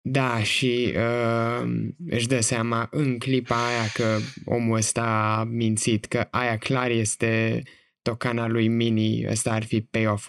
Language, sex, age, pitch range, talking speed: Romanian, male, 20-39, 110-125 Hz, 145 wpm